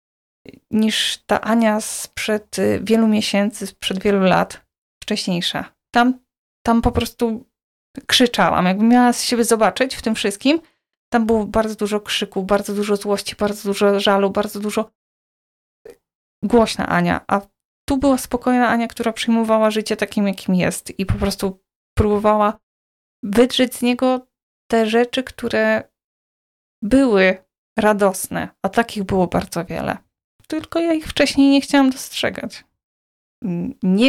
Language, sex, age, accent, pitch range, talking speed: Polish, female, 20-39, native, 195-240 Hz, 130 wpm